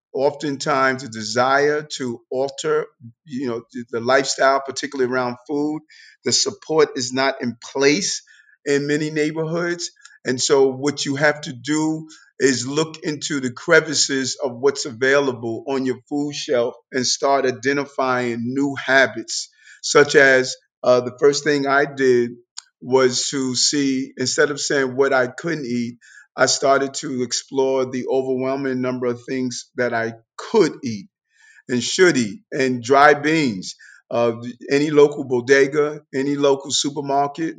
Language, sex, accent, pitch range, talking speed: English, male, American, 125-145 Hz, 140 wpm